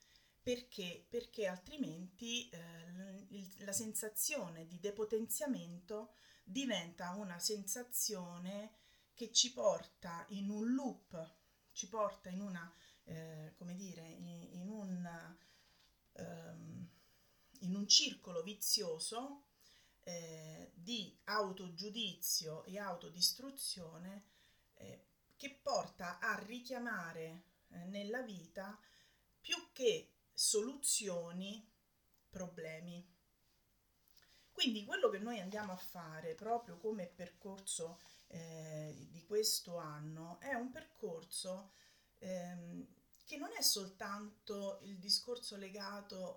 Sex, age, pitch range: female, 30-49, 175-225 Hz